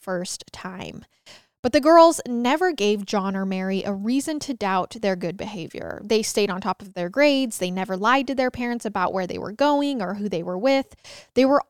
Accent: American